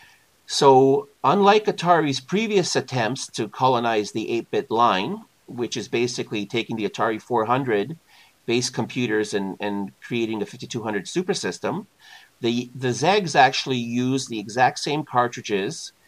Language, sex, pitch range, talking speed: English, male, 110-135 Hz, 125 wpm